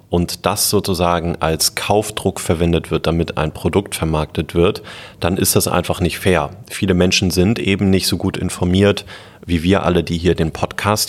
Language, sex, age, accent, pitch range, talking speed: German, male, 30-49, German, 85-115 Hz, 180 wpm